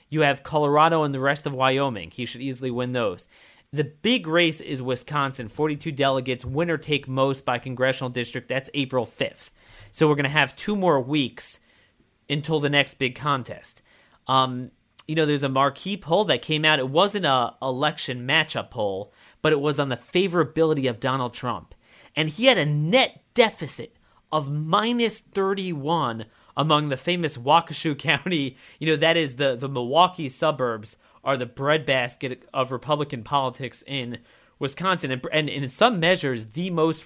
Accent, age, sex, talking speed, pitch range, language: American, 30-49, male, 170 wpm, 120-155 Hz, English